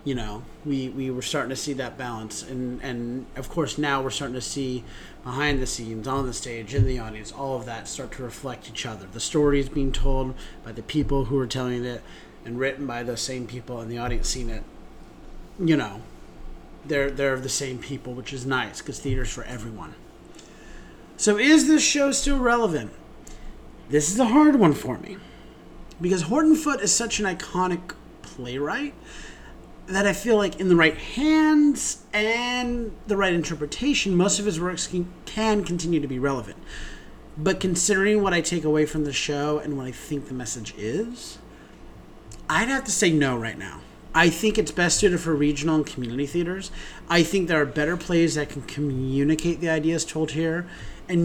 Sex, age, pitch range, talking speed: male, 30-49, 130-180 Hz, 190 wpm